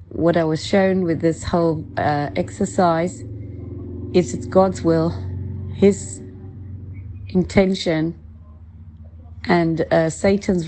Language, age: English, 40-59